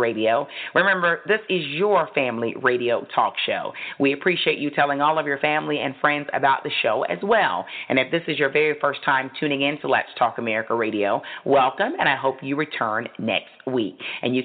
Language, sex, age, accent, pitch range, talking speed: English, female, 40-59, American, 135-165 Hz, 205 wpm